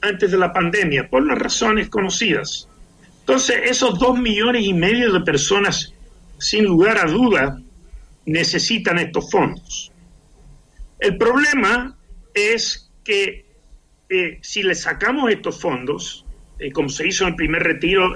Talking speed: 135 wpm